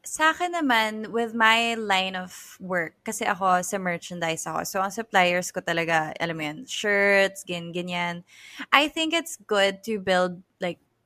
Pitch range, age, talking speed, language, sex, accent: 175-215 Hz, 20-39, 175 wpm, English, female, Filipino